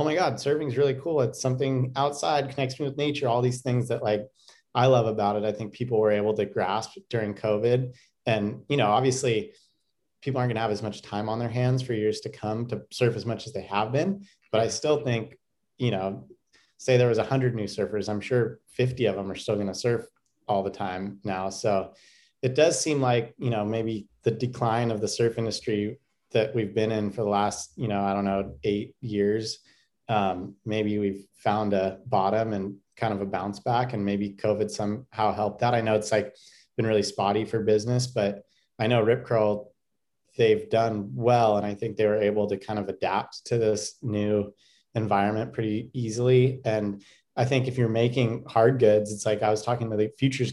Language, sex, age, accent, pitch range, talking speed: English, male, 30-49, American, 105-125 Hz, 215 wpm